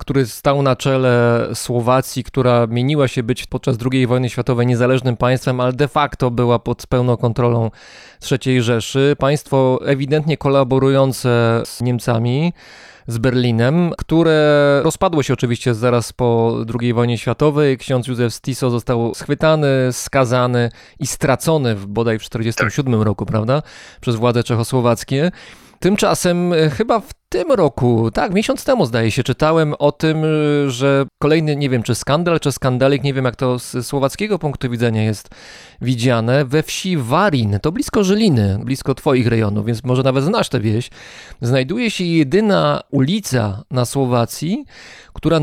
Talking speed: 145 wpm